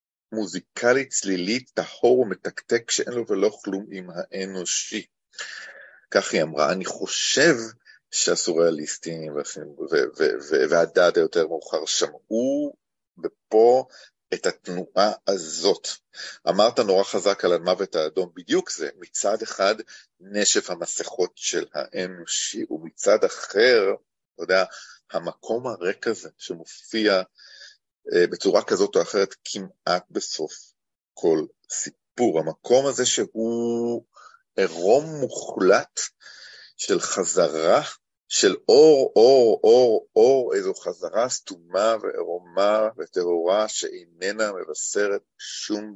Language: Hebrew